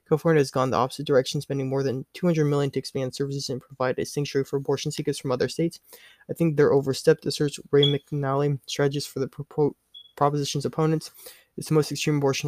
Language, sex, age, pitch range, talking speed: English, male, 20-39, 140-155 Hz, 195 wpm